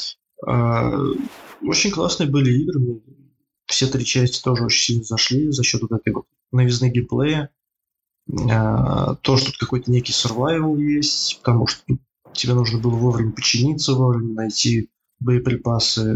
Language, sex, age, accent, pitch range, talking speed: Russian, male, 20-39, native, 120-140 Hz, 125 wpm